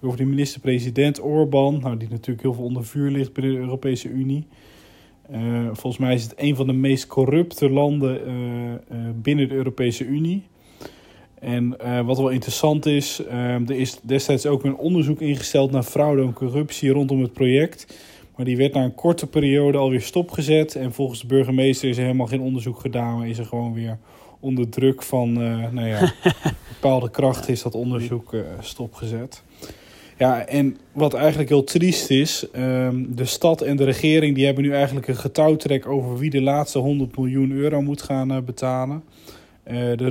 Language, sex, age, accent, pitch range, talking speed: Dutch, male, 20-39, Dutch, 120-140 Hz, 180 wpm